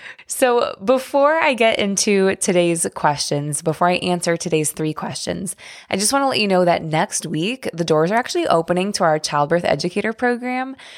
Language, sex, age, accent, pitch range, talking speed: English, female, 20-39, American, 160-220 Hz, 180 wpm